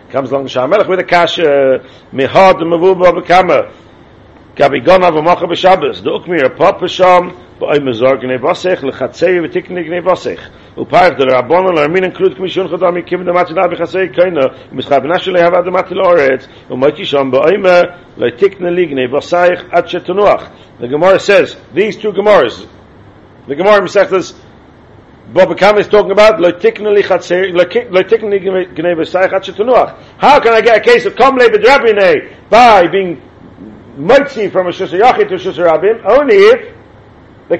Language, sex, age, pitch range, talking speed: English, male, 50-69, 175-210 Hz, 155 wpm